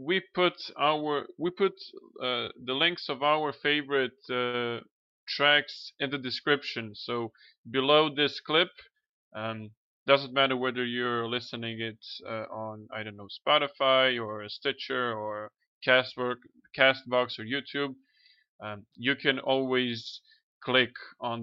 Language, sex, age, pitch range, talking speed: English, male, 20-39, 120-145 Hz, 130 wpm